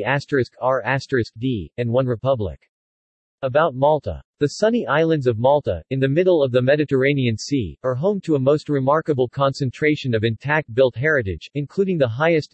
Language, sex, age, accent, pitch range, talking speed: English, male, 40-59, American, 120-150 Hz, 170 wpm